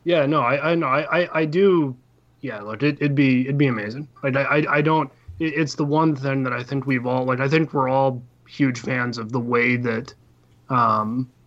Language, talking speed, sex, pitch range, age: English, 220 wpm, male, 125-145 Hz, 30-49